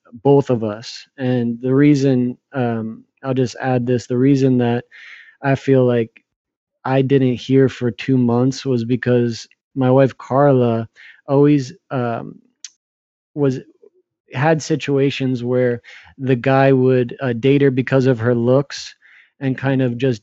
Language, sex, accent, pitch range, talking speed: English, male, American, 125-140 Hz, 140 wpm